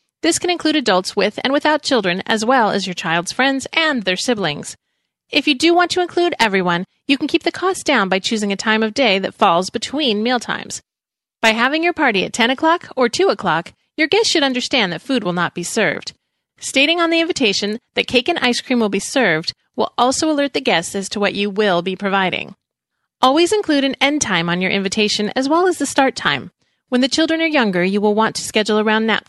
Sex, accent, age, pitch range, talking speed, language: female, American, 30-49, 195-280 Hz, 225 wpm, English